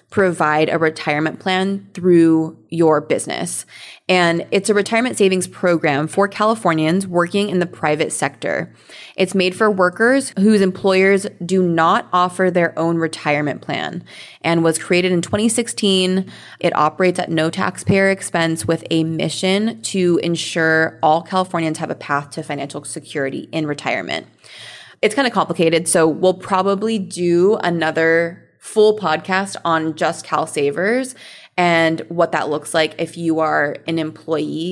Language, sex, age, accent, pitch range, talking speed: English, female, 20-39, American, 160-195 Hz, 145 wpm